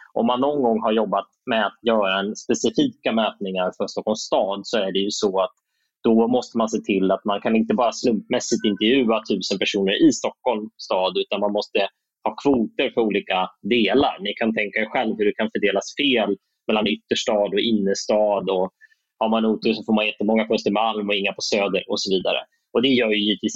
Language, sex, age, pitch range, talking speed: Swedish, male, 20-39, 100-115 Hz, 210 wpm